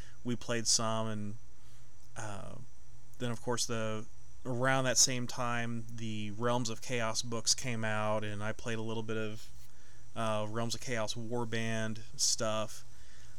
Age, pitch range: 30-49, 110-120 Hz